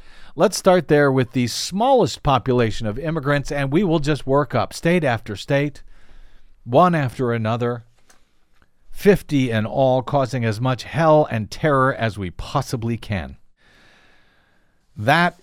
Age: 50-69